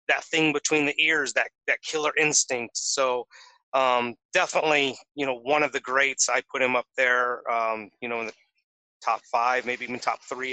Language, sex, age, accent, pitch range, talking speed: English, male, 30-49, American, 120-145 Hz, 195 wpm